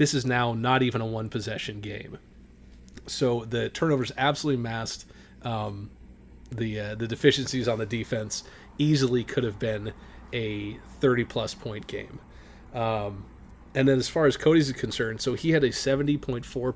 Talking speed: 155 wpm